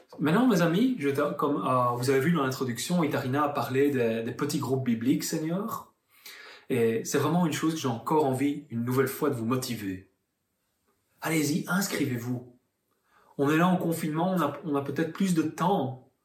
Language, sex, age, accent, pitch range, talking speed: French, male, 30-49, French, 130-165 Hz, 180 wpm